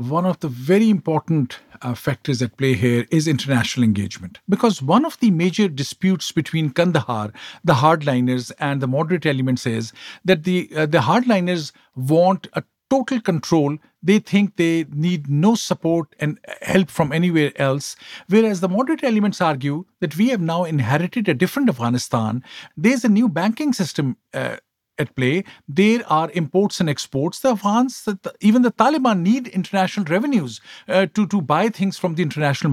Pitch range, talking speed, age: 150-220 Hz, 165 wpm, 50-69